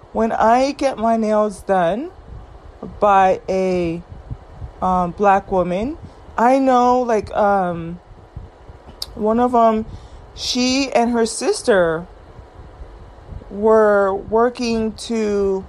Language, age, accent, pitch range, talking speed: English, 30-49, American, 190-235 Hz, 95 wpm